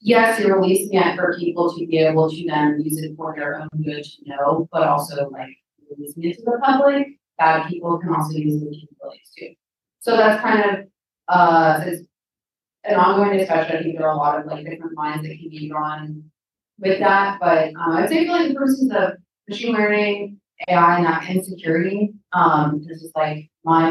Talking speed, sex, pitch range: 205 wpm, female, 155-175 Hz